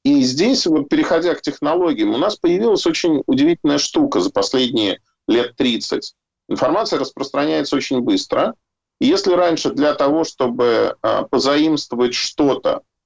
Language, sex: Russian, male